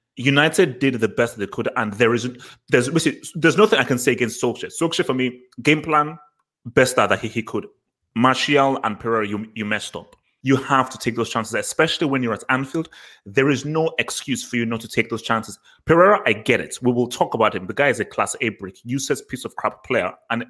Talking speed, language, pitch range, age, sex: 230 wpm, English, 120-170 Hz, 30-49, male